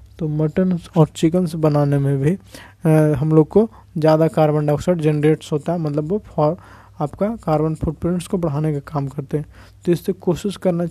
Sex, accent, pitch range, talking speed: male, native, 150-175 Hz, 175 wpm